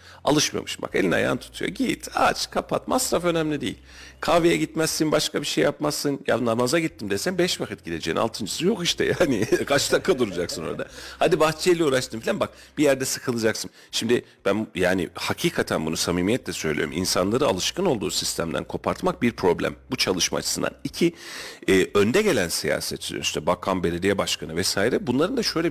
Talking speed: 160 wpm